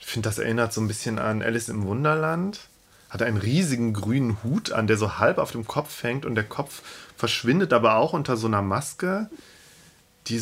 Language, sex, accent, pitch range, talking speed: German, male, German, 110-140 Hz, 200 wpm